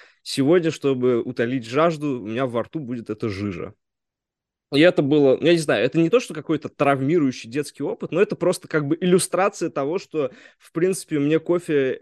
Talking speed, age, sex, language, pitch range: 185 wpm, 20-39, male, Russian, 125-165 Hz